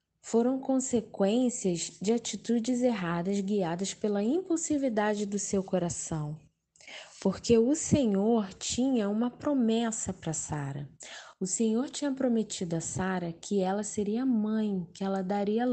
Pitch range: 185-255 Hz